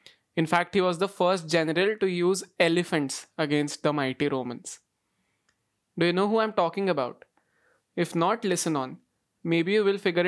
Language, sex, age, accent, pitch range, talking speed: English, male, 20-39, Indian, 165-200 Hz, 170 wpm